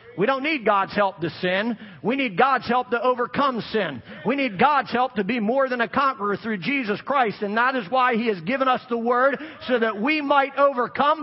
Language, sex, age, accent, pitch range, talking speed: English, male, 50-69, American, 190-240 Hz, 225 wpm